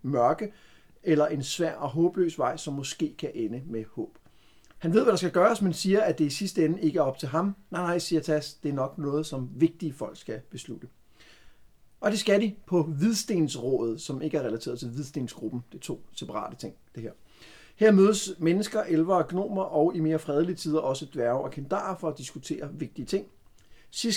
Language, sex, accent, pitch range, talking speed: Danish, male, native, 145-185 Hz, 210 wpm